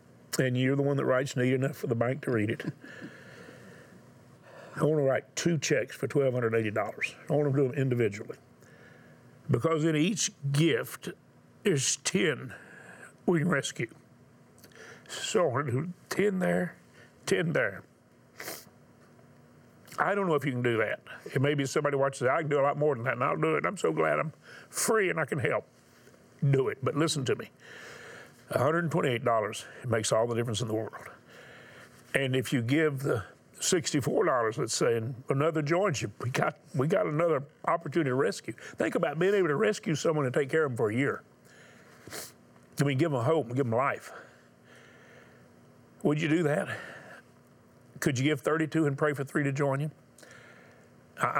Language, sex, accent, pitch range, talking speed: English, male, American, 125-155 Hz, 175 wpm